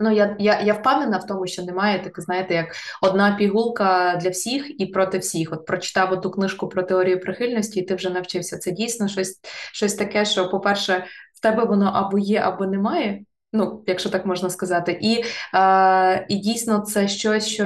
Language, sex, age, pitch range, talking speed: Ukrainian, female, 20-39, 185-215 Hz, 190 wpm